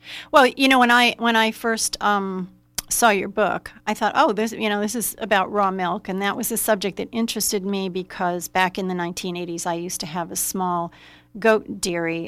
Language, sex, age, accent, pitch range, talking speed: English, female, 40-59, American, 185-220 Hz, 215 wpm